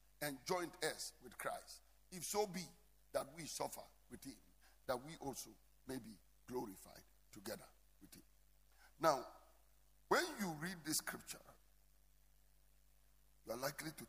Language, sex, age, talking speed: English, male, 50-69, 135 wpm